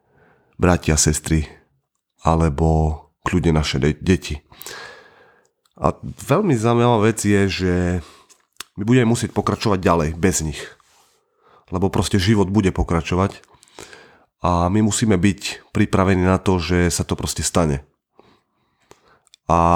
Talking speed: 120 wpm